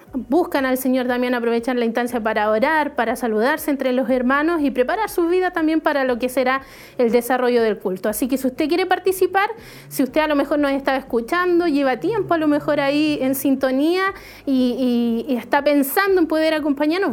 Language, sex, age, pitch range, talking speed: Spanish, female, 30-49, 245-300 Hz, 195 wpm